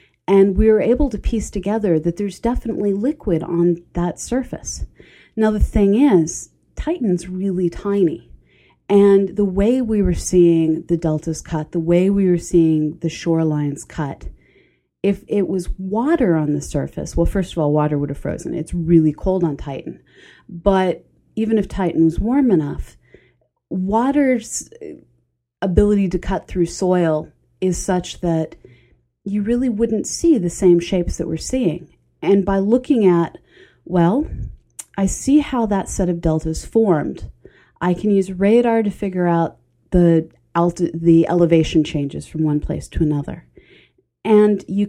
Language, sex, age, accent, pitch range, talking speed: English, female, 30-49, American, 165-205 Hz, 155 wpm